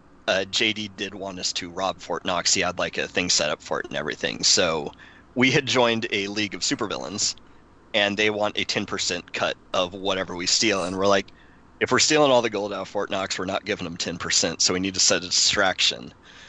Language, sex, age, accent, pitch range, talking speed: English, male, 30-49, American, 95-115 Hz, 230 wpm